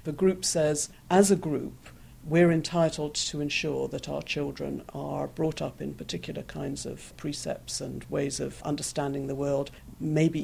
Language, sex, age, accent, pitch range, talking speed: English, female, 50-69, British, 145-180 Hz, 160 wpm